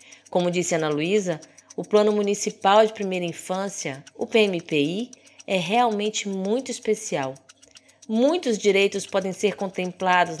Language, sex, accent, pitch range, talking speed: Portuguese, female, Brazilian, 175-230 Hz, 120 wpm